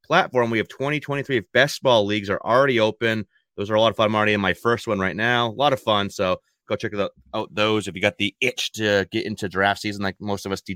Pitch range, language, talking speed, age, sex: 100-120 Hz, English, 270 wpm, 30-49, male